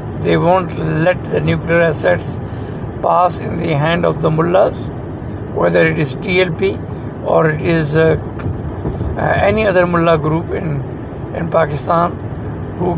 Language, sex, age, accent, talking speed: English, male, 60-79, Indian, 140 wpm